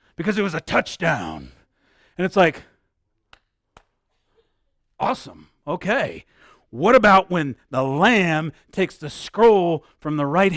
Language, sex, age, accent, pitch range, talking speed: English, male, 40-59, American, 150-220 Hz, 120 wpm